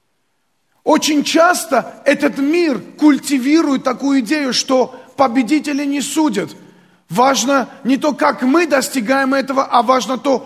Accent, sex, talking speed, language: native, male, 120 wpm, Russian